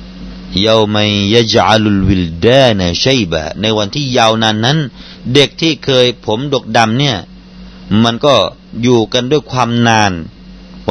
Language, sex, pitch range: Thai, male, 95-125 Hz